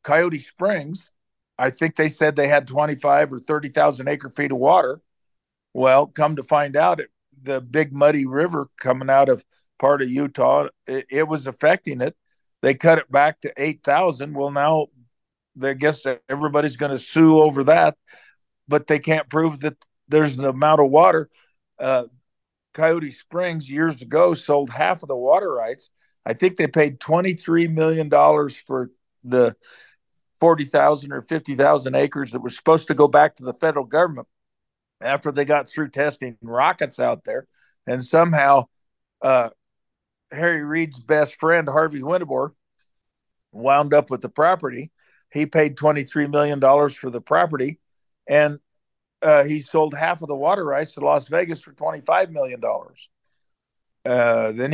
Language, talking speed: English, 155 wpm